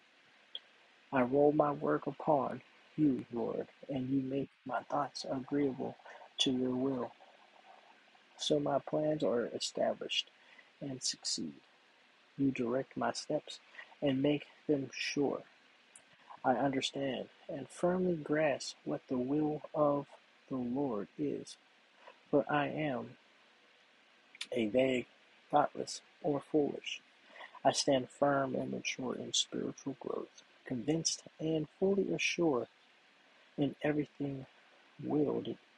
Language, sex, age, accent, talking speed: English, male, 40-59, American, 110 wpm